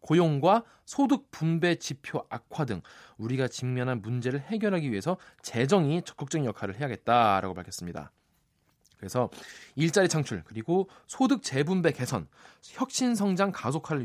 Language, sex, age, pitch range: Korean, male, 20-39, 120-195 Hz